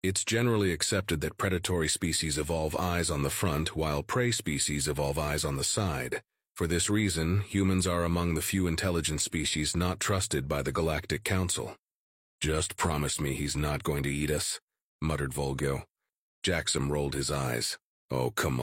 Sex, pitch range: male, 75-95 Hz